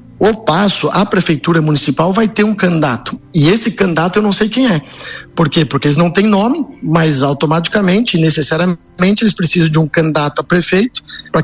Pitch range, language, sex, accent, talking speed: 145-190 Hz, Portuguese, male, Brazilian, 185 wpm